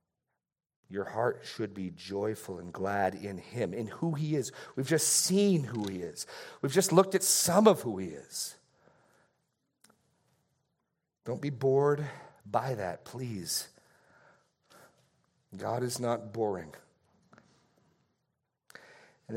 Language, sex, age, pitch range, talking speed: English, male, 40-59, 100-145 Hz, 120 wpm